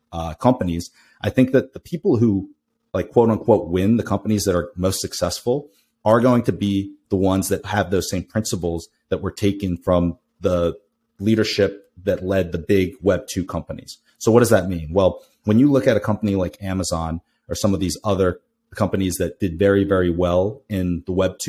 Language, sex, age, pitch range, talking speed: English, male, 30-49, 90-110 Hz, 195 wpm